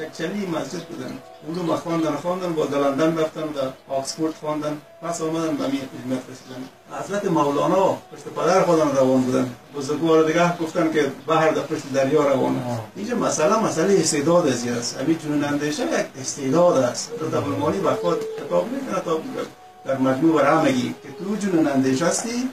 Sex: male